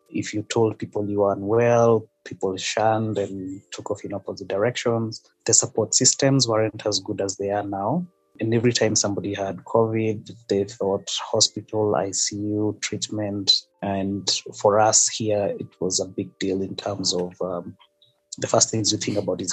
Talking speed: 170 wpm